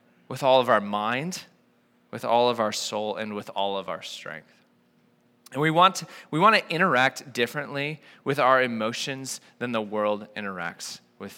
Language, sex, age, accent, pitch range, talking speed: English, male, 20-39, American, 110-150 Hz, 175 wpm